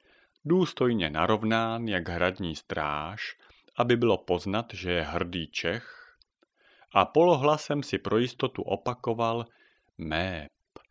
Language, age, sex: Czech, 40-59, male